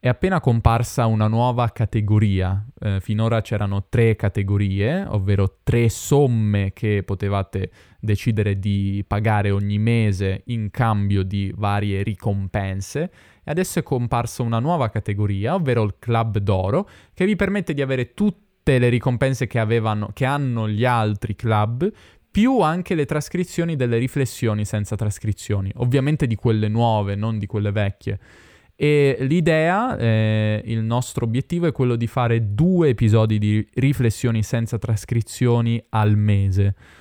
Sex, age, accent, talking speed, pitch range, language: male, 20-39, native, 140 wpm, 100-125 Hz, Italian